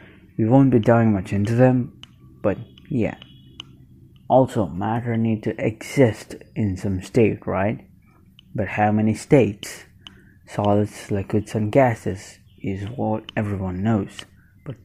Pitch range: 100-120 Hz